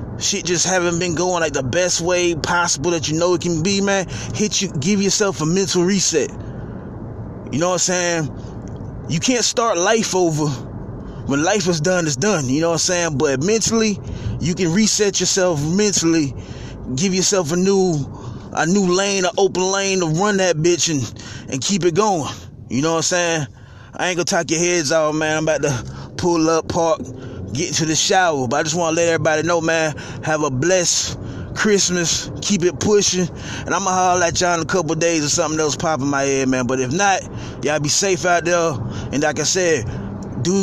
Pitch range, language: 140-190 Hz, English